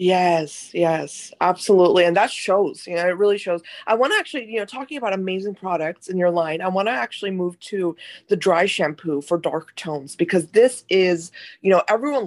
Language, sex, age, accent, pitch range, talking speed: English, female, 20-39, American, 170-205 Hz, 205 wpm